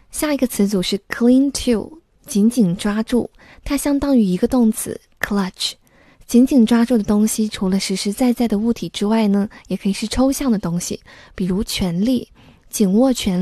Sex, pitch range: female, 195-245 Hz